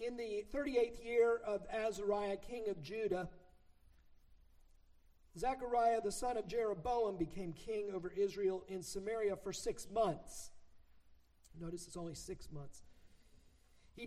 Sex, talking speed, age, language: male, 125 wpm, 50-69, English